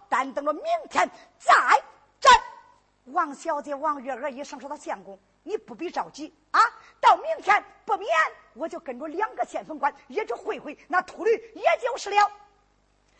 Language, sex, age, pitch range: Chinese, female, 50-69, 285-410 Hz